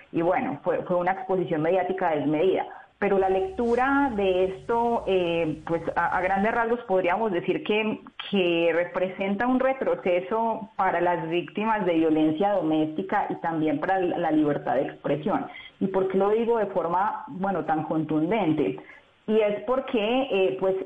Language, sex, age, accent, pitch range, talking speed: Spanish, female, 30-49, Colombian, 165-205 Hz, 160 wpm